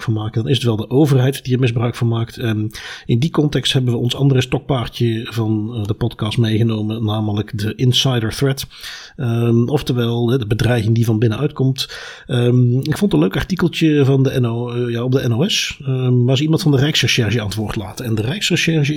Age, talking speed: 40-59, 200 wpm